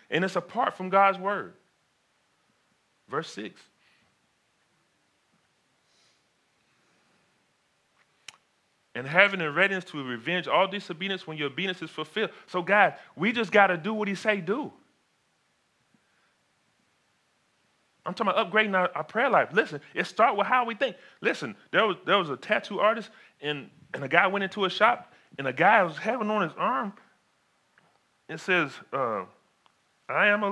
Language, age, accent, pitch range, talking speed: English, 30-49, American, 155-215 Hz, 150 wpm